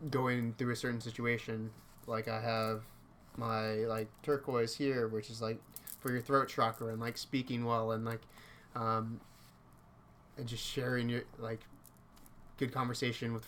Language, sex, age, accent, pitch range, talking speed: English, male, 20-39, American, 110-125 Hz, 150 wpm